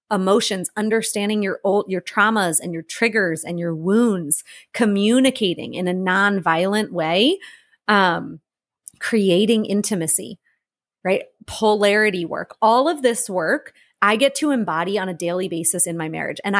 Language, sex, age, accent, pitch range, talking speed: English, female, 30-49, American, 185-235 Hz, 140 wpm